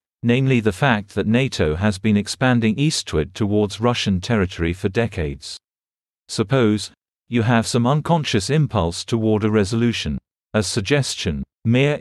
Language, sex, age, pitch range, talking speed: English, male, 40-59, 95-120 Hz, 130 wpm